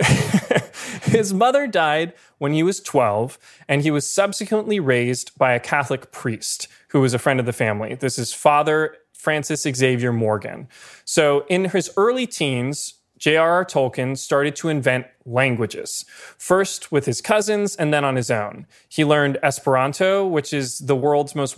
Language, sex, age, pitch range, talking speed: English, male, 20-39, 130-170 Hz, 160 wpm